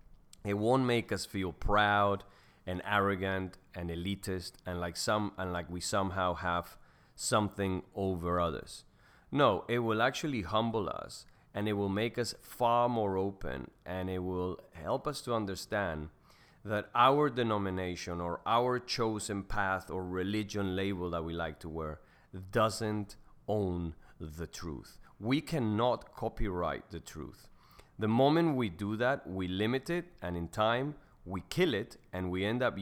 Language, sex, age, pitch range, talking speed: English, male, 30-49, 90-110 Hz, 155 wpm